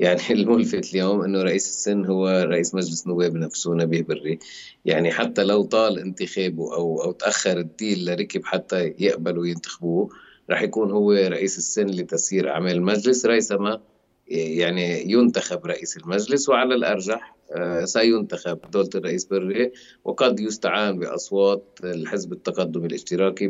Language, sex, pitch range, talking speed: Arabic, male, 90-105 Hz, 135 wpm